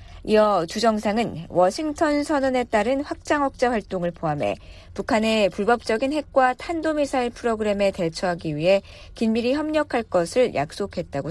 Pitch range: 185-265 Hz